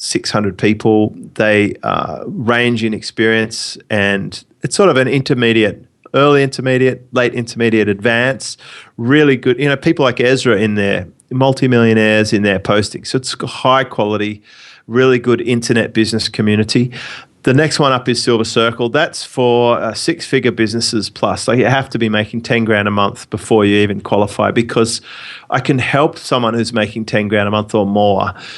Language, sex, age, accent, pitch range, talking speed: English, male, 30-49, Australian, 105-125 Hz, 170 wpm